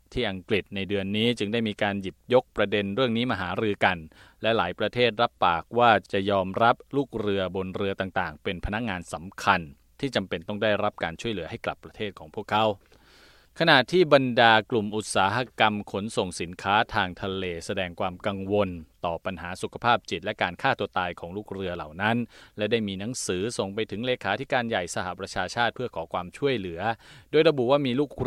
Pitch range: 95-120 Hz